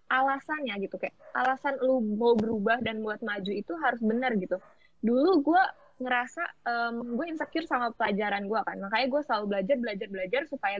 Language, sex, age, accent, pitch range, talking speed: Indonesian, female, 20-39, native, 200-270 Hz, 160 wpm